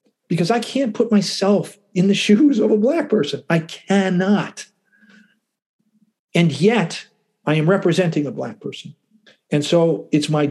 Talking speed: 150 wpm